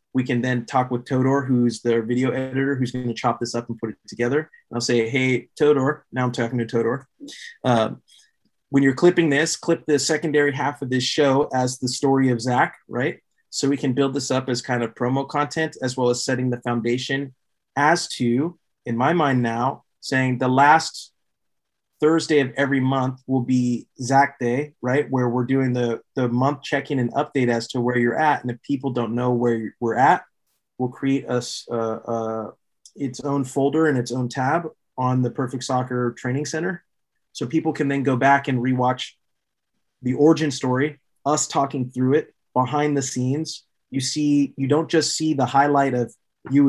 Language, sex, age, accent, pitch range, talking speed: English, male, 30-49, American, 125-145 Hz, 190 wpm